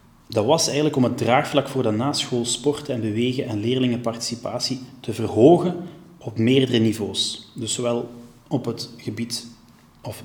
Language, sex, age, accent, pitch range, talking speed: Dutch, male, 20-39, Dutch, 115-140 Hz, 145 wpm